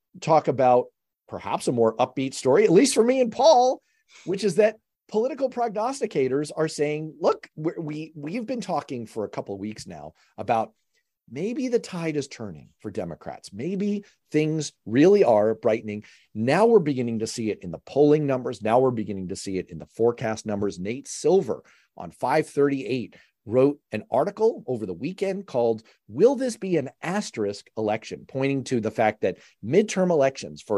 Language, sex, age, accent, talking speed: English, male, 40-59, American, 175 wpm